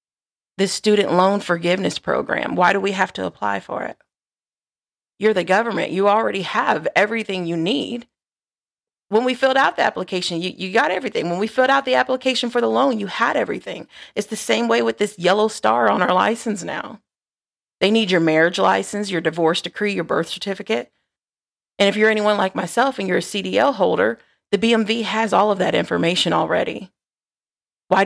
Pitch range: 195-235 Hz